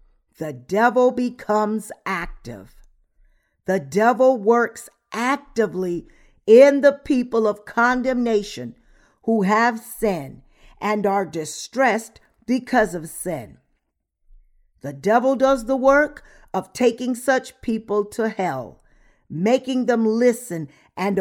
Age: 50-69